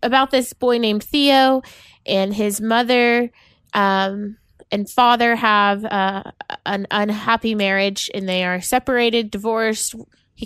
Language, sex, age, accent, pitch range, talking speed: English, female, 20-39, American, 200-230 Hz, 125 wpm